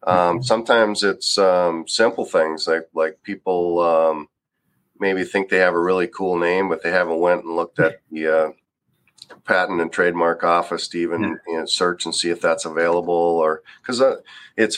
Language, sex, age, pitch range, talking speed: English, male, 40-59, 80-95 Hz, 185 wpm